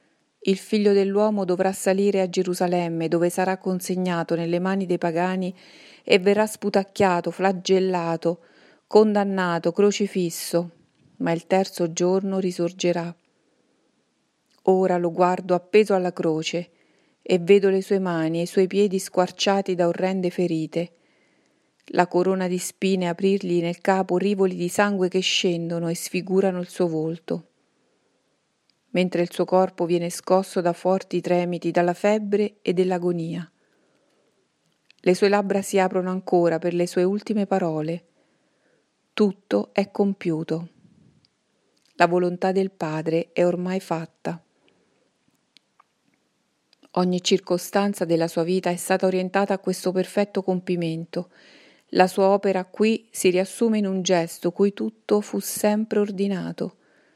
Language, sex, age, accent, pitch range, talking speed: Italian, female, 40-59, native, 175-195 Hz, 125 wpm